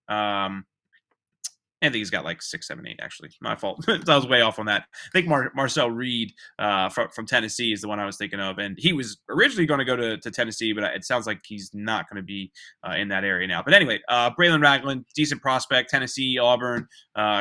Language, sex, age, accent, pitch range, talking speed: English, male, 20-39, American, 105-130 Hz, 235 wpm